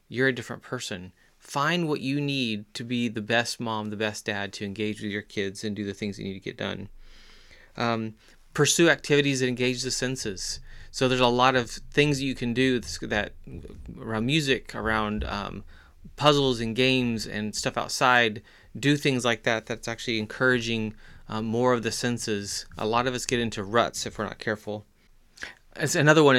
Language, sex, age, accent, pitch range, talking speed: English, male, 30-49, American, 110-130 Hz, 195 wpm